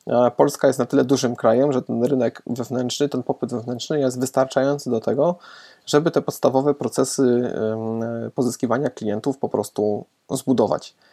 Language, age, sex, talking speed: Polish, 20-39, male, 140 wpm